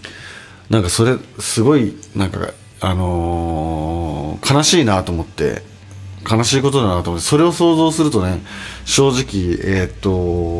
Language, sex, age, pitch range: Japanese, male, 40-59, 95-125 Hz